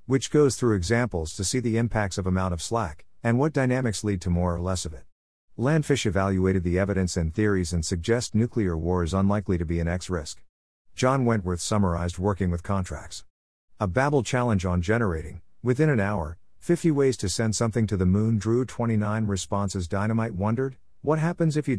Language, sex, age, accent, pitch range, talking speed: English, male, 50-69, American, 90-120 Hz, 190 wpm